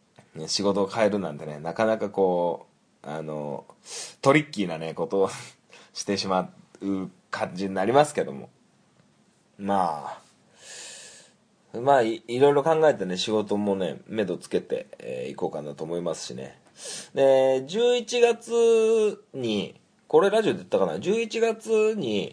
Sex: male